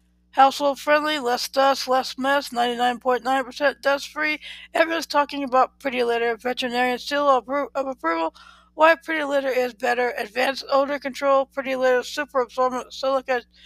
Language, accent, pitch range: English, American, 245-280 Hz